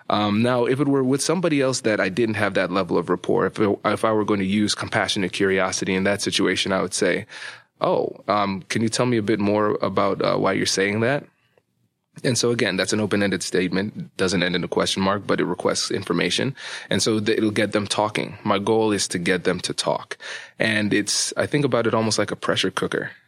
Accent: American